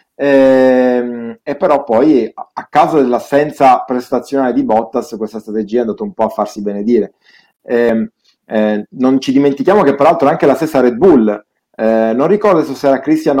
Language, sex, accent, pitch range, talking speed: Italian, male, native, 110-140 Hz, 160 wpm